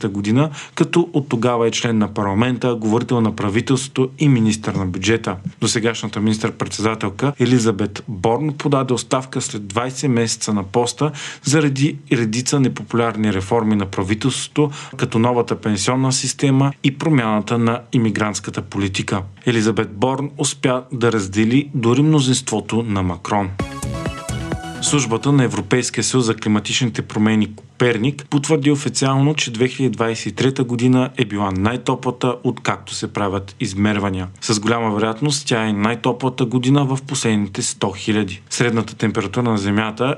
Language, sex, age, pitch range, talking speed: Bulgarian, male, 40-59, 110-135 Hz, 130 wpm